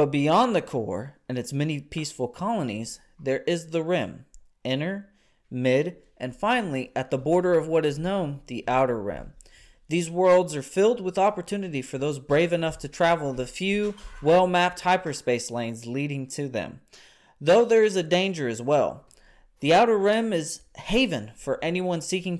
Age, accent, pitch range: 20-39, American, 130-180 Hz